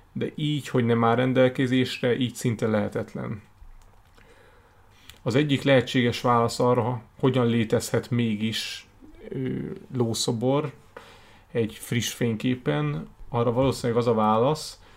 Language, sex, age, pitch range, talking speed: Hungarian, male, 30-49, 110-130 Hz, 105 wpm